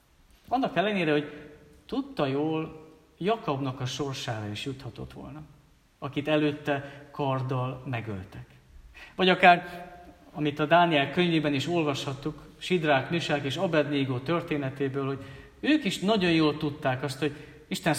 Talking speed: 125 wpm